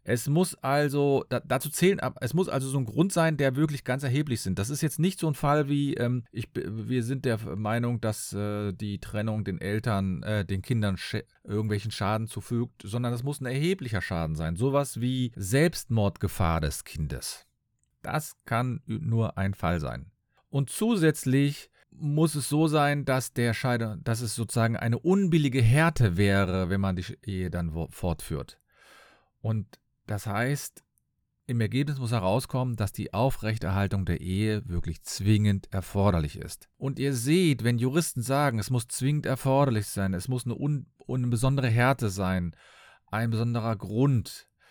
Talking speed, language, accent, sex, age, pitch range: 155 wpm, German, German, male, 40-59, 105-135 Hz